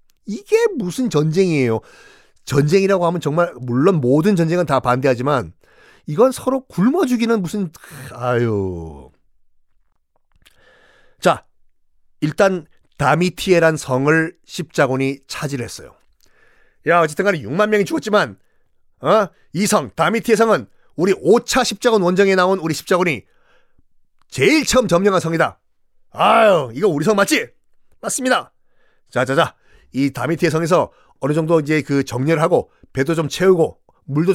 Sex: male